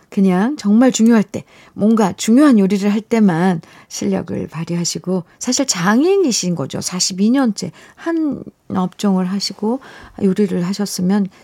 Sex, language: female, Korean